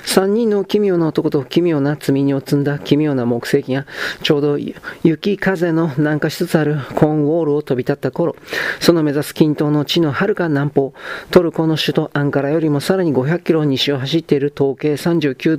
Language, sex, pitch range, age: Japanese, male, 140-165 Hz, 40-59